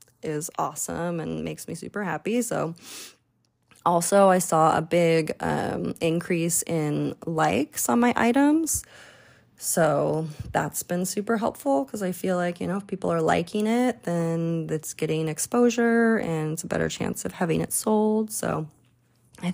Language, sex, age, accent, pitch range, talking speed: English, female, 20-39, American, 165-210 Hz, 155 wpm